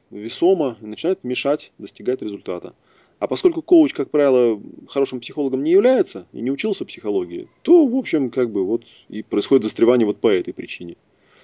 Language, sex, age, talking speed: Russian, male, 20-39, 170 wpm